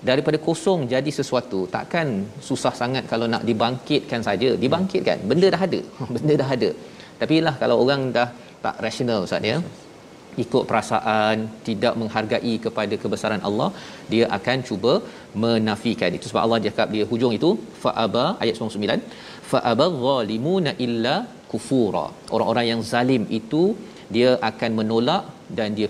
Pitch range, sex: 110-135 Hz, male